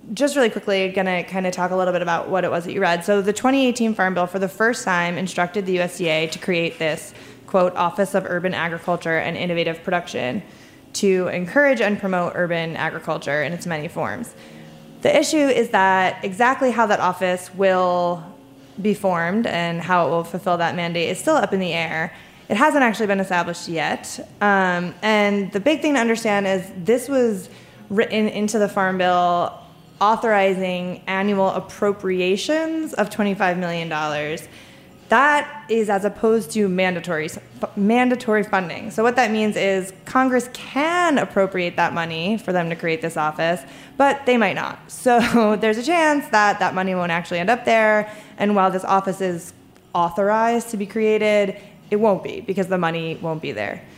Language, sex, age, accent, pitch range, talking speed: English, female, 20-39, American, 175-220 Hz, 180 wpm